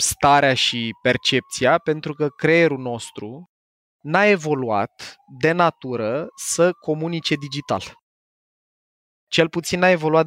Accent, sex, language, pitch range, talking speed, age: native, male, Romanian, 130-165 Hz, 105 wpm, 20-39